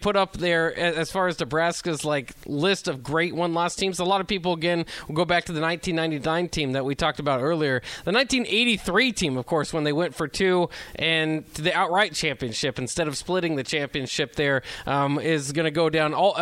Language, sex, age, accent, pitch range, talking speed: English, male, 20-39, American, 145-175 Hz, 215 wpm